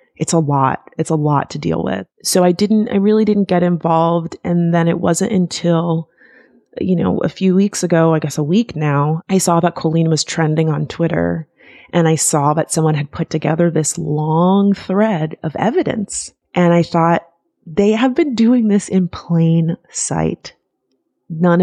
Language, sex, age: English, female, 30-49